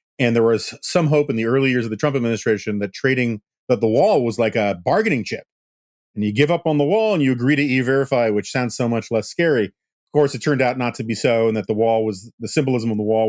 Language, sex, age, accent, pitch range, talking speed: English, male, 40-59, American, 110-135 Hz, 270 wpm